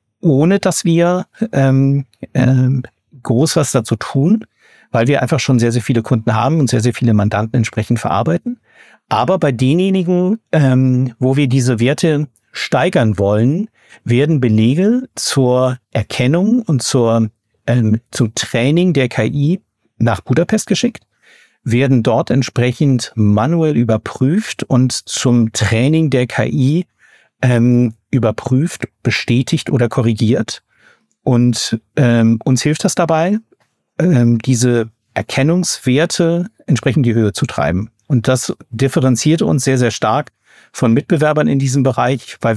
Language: German